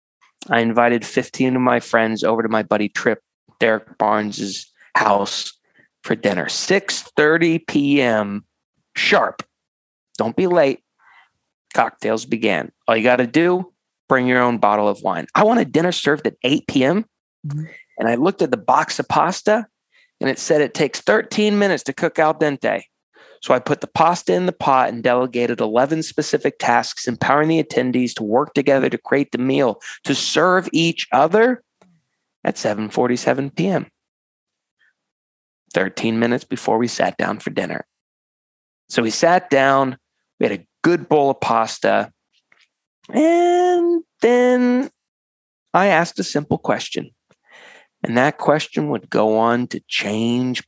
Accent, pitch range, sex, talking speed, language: American, 115-175 Hz, male, 150 wpm, English